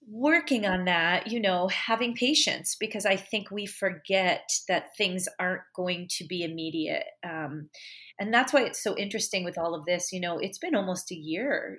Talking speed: 190 wpm